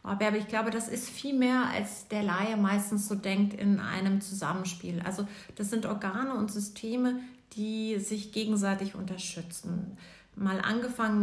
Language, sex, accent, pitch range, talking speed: German, female, German, 195-235 Hz, 150 wpm